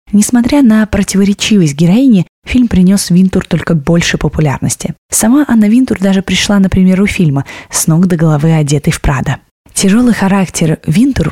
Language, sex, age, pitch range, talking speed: Russian, female, 20-39, 160-205 Hz, 150 wpm